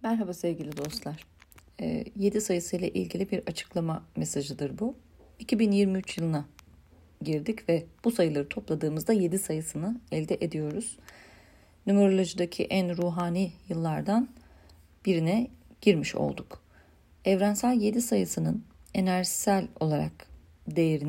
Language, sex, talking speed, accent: Turkish, female, 100 wpm, native